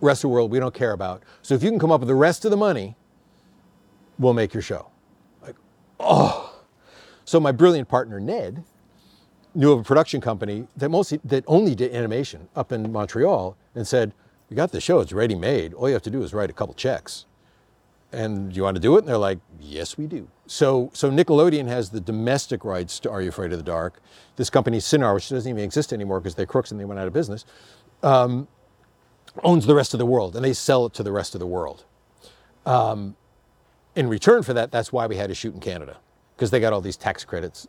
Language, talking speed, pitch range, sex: English, 230 wpm, 100-140 Hz, male